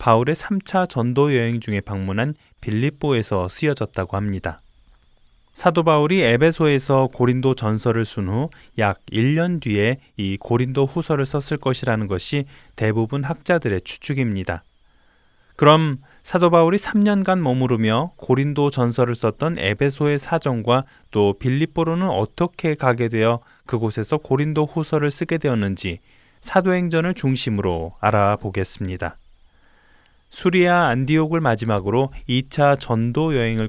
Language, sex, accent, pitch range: Korean, male, native, 105-155 Hz